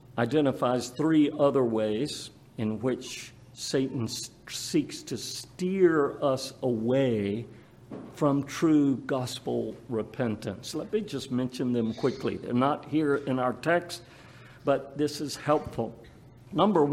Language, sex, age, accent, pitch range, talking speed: English, male, 50-69, American, 125-170 Hz, 115 wpm